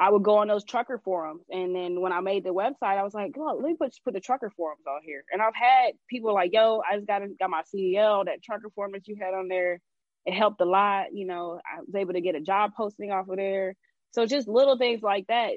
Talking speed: 270 wpm